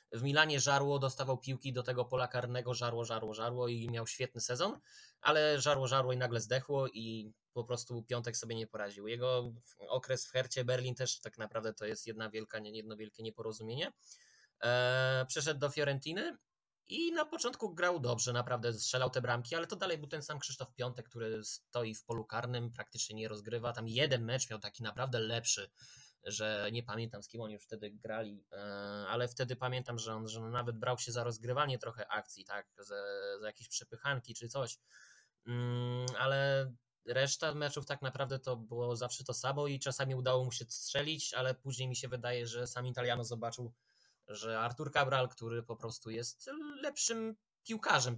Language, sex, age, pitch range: Polish, male, 20-39, 115-140 Hz